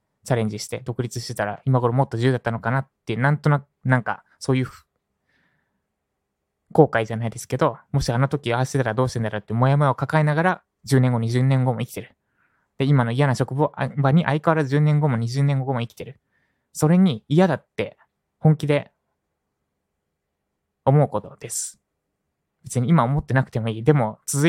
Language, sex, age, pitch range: Japanese, male, 20-39, 110-140 Hz